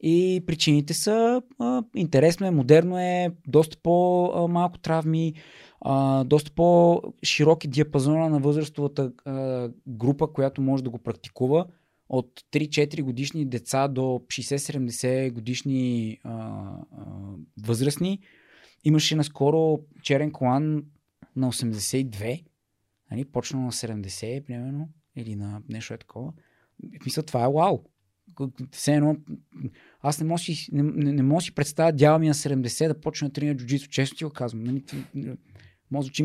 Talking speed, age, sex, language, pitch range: 125 wpm, 20-39, male, Bulgarian, 130-165 Hz